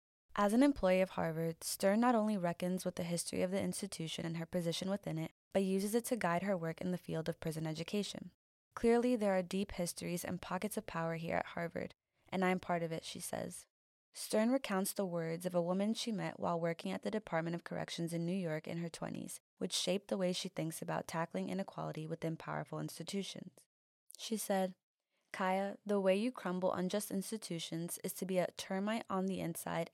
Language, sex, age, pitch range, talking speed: English, female, 20-39, 170-195 Hz, 210 wpm